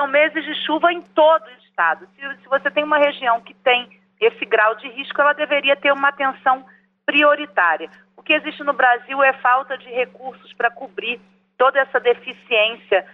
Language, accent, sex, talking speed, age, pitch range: Portuguese, Brazilian, female, 185 wpm, 40-59, 215-285 Hz